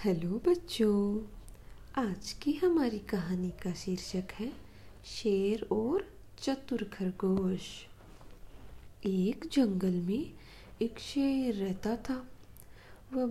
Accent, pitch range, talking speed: native, 200-270 Hz, 95 wpm